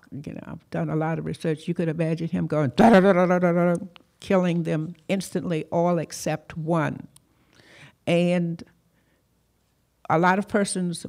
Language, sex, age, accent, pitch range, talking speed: English, female, 60-79, American, 165-190 Hz, 130 wpm